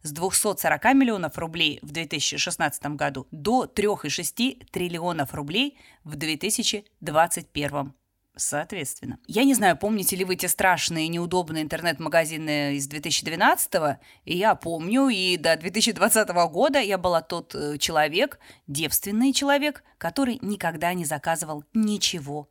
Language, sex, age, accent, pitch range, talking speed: Russian, female, 20-39, native, 160-215 Hz, 115 wpm